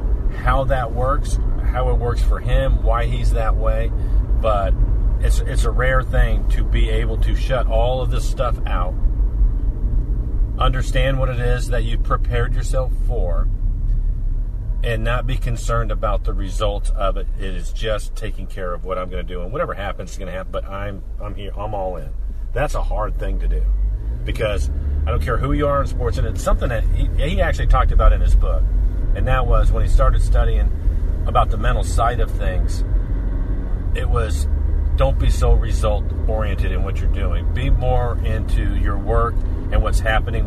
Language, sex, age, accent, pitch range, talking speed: English, male, 40-59, American, 80-110 Hz, 195 wpm